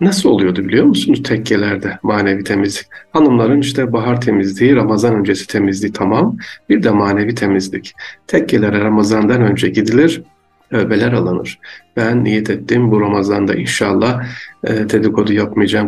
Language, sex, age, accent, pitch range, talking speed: Turkish, male, 50-69, native, 105-120 Hz, 125 wpm